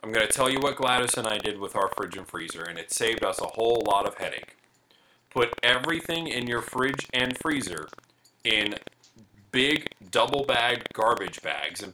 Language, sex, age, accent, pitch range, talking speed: English, male, 40-59, American, 145-185 Hz, 190 wpm